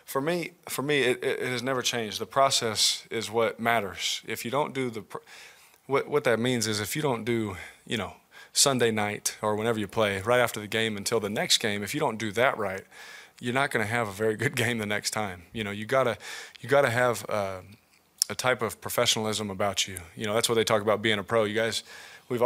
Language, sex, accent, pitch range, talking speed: English, male, American, 105-125 Hz, 240 wpm